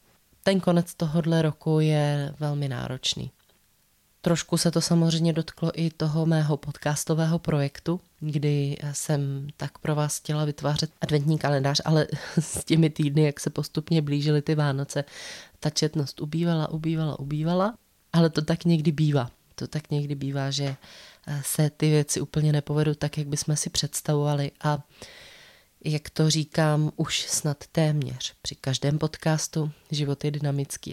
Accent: native